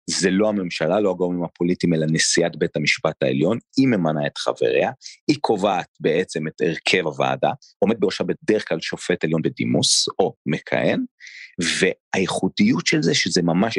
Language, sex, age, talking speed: Hebrew, male, 30-49, 150 wpm